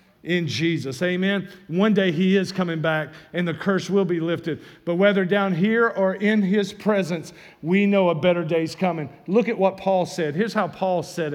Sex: male